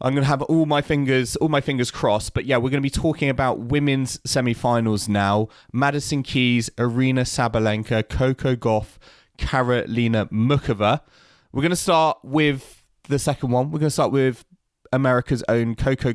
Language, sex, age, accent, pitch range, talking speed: English, male, 20-39, British, 110-140 Hz, 175 wpm